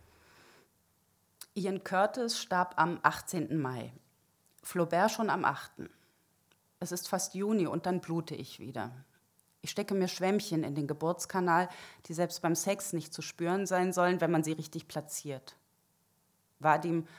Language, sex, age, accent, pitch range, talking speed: German, female, 30-49, German, 160-190 Hz, 145 wpm